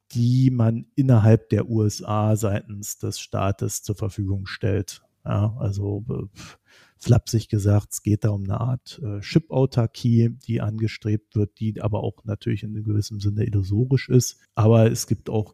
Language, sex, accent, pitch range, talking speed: German, male, German, 100-115 Hz, 150 wpm